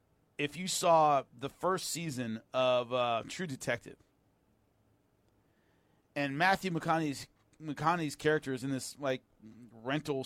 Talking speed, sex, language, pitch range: 115 wpm, male, English, 125-175 Hz